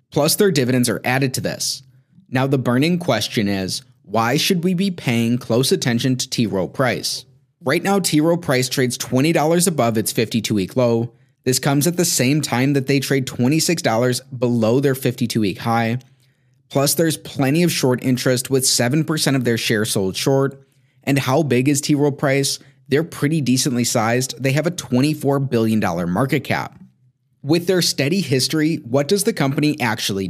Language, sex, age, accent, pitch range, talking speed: English, male, 30-49, American, 120-145 Hz, 180 wpm